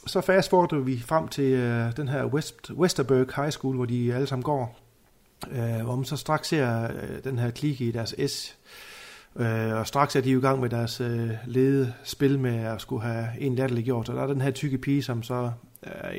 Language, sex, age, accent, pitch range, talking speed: Danish, male, 30-49, native, 115-135 Hz, 215 wpm